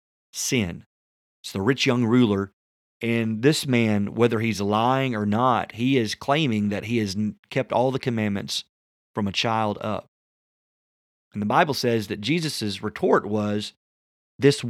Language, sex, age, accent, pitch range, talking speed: English, male, 30-49, American, 95-125 Hz, 150 wpm